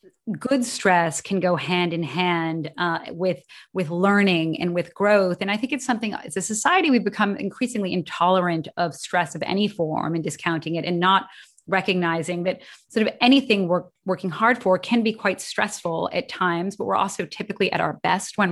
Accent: American